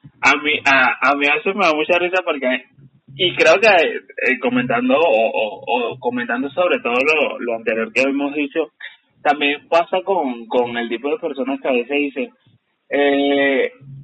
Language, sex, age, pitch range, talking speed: Spanish, male, 20-39, 135-180 Hz, 175 wpm